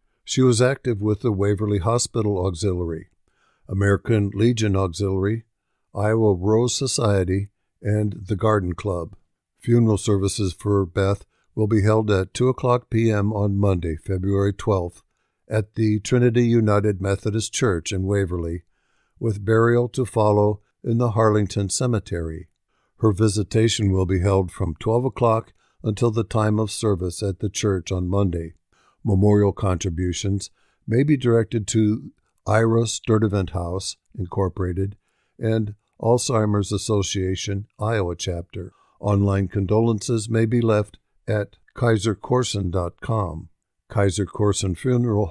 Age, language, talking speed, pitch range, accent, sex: 60-79, English, 120 wpm, 95-115 Hz, American, male